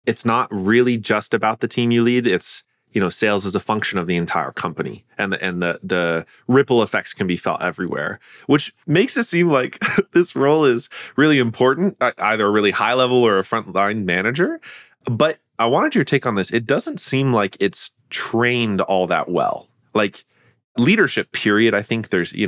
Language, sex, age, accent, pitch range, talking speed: English, male, 20-39, American, 100-130 Hz, 195 wpm